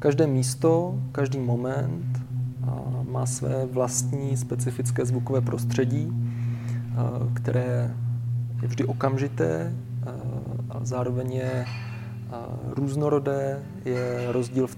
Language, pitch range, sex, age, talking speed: Czech, 120-135 Hz, male, 20-39, 85 wpm